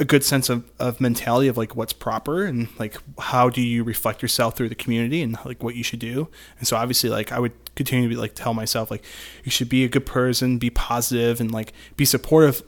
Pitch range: 115-135 Hz